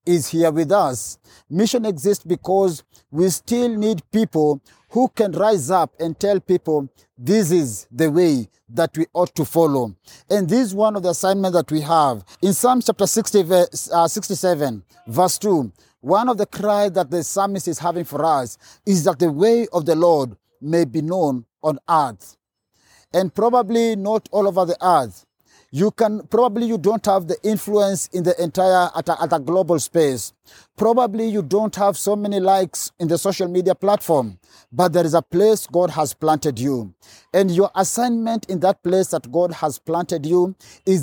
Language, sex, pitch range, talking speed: English, male, 155-200 Hz, 180 wpm